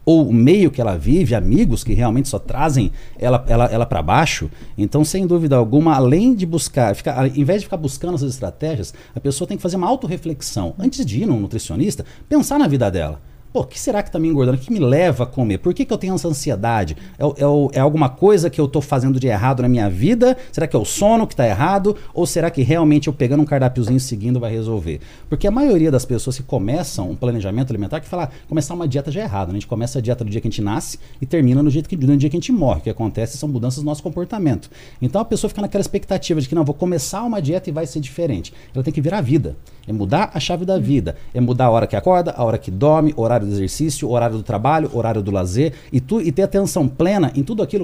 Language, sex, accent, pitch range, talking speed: Portuguese, male, Brazilian, 120-165 Hz, 260 wpm